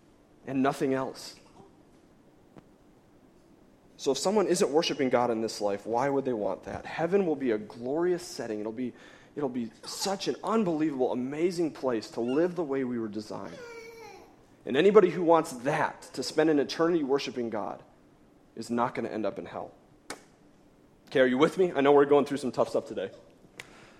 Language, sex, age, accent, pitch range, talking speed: English, male, 30-49, American, 120-170 Hz, 180 wpm